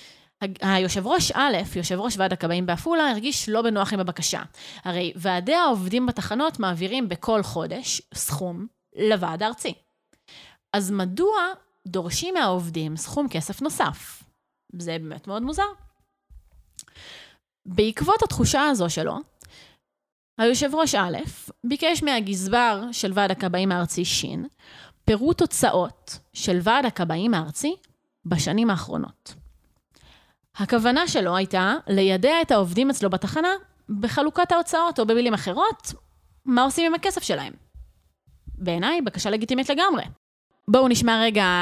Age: 20-39